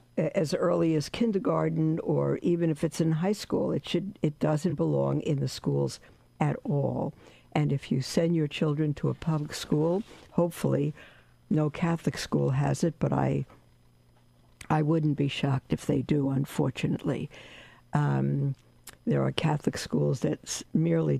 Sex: female